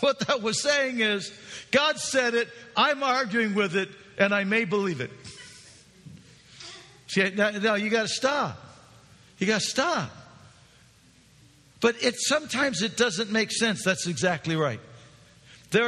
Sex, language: male, English